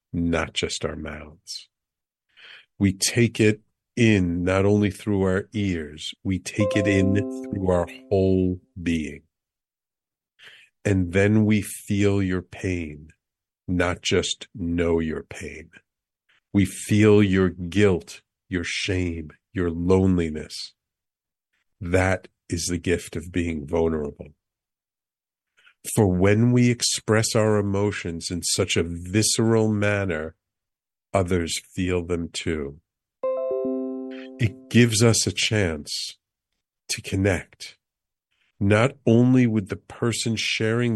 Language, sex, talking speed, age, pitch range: English, male, 110 wpm, 50-69, 90-110 Hz